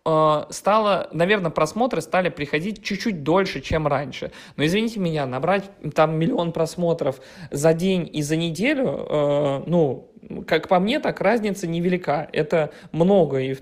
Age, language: 20-39, Russian